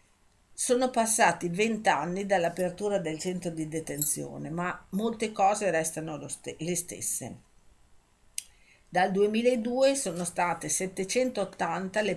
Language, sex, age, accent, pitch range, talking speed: Italian, female, 50-69, native, 160-205 Hz, 105 wpm